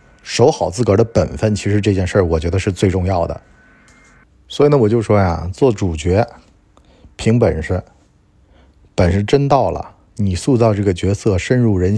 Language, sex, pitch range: Chinese, male, 95-110 Hz